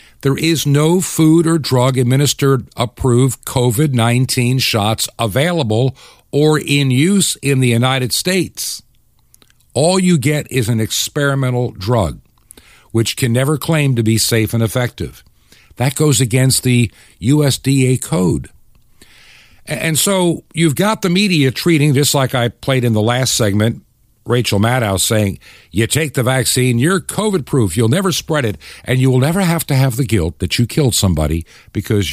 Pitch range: 105-135 Hz